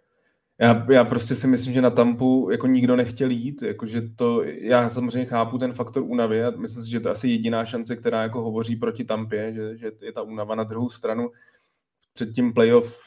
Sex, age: male, 20-39